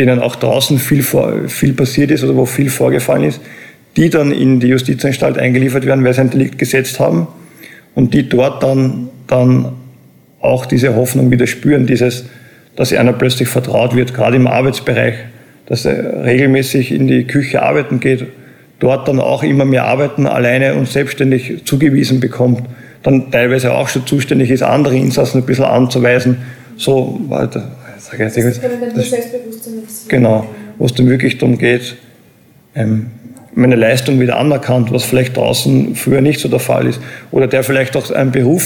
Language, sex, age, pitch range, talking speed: German, male, 50-69, 125-135 Hz, 160 wpm